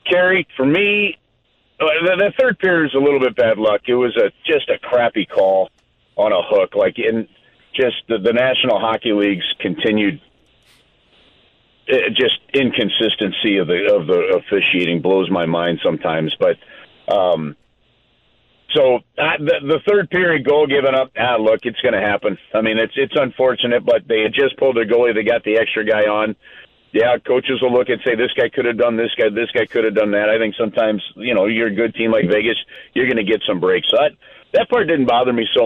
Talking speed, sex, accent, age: 205 wpm, male, American, 50-69